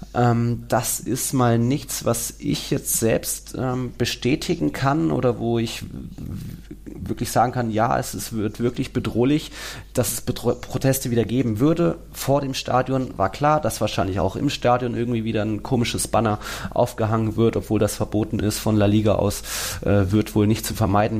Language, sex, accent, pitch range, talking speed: German, male, German, 100-120 Hz, 170 wpm